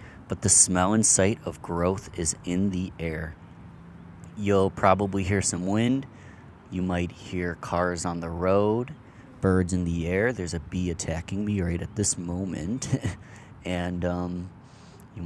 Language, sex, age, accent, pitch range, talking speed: English, male, 30-49, American, 90-105 Hz, 155 wpm